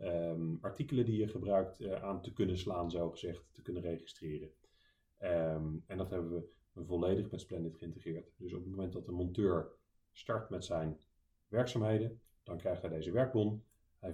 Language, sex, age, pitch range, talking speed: Dutch, male, 30-49, 85-105 Hz, 160 wpm